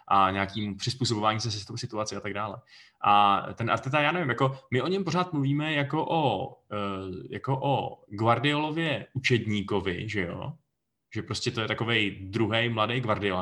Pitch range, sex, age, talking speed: 110-140 Hz, male, 20-39, 160 wpm